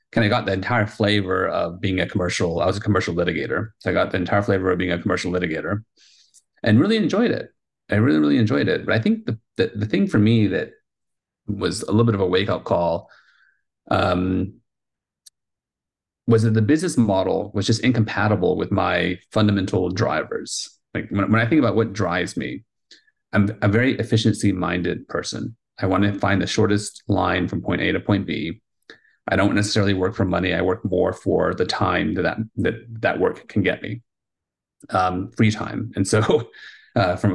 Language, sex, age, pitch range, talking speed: English, male, 30-49, 95-110 Hz, 195 wpm